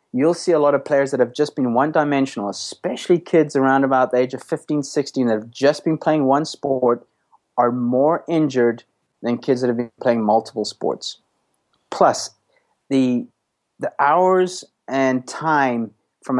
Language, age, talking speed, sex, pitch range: English, 30-49, 165 wpm, male, 120-145 Hz